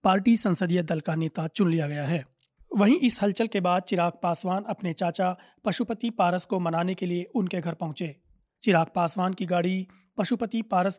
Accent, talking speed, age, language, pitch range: native, 180 wpm, 30-49, Hindi, 165-200 Hz